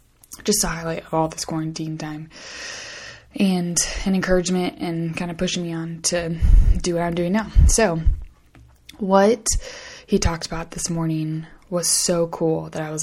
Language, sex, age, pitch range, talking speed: English, female, 20-39, 155-175 Hz, 160 wpm